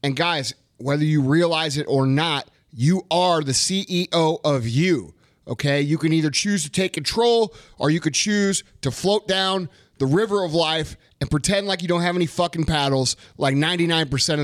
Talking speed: 185 wpm